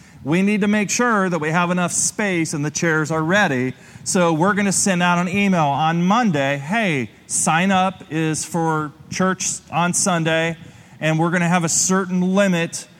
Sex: male